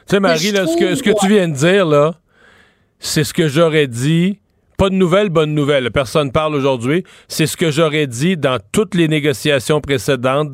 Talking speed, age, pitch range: 190 wpm, 40-59, 145-185 Hz